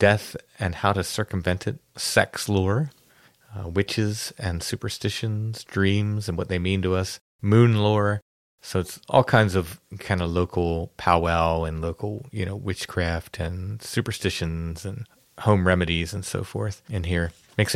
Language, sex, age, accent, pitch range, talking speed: English, male, 30-49, American, 90-105 Hz, 155 wpm